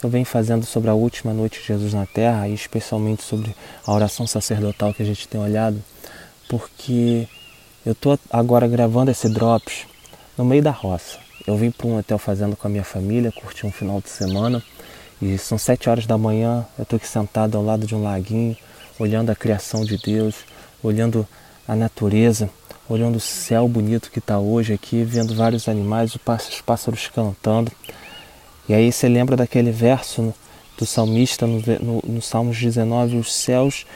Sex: male